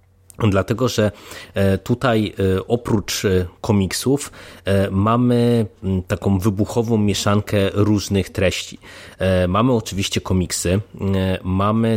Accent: native